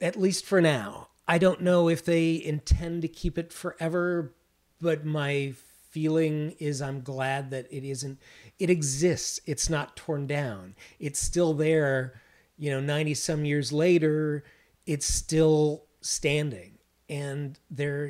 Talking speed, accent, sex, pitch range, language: 145 wpm, American, male, 140-165 Hz, English